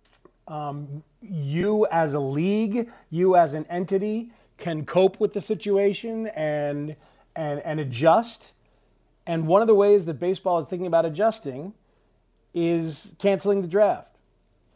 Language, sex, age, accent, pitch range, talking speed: English, male, 40-59, American, 155-200 Hz, 135 wpm